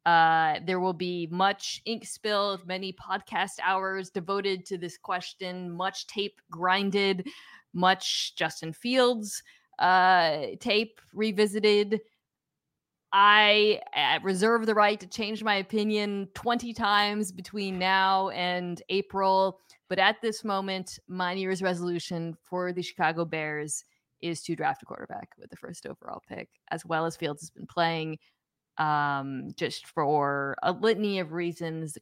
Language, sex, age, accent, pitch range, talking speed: English, female, 20-39, American, 155-200 Hz, 135 wpm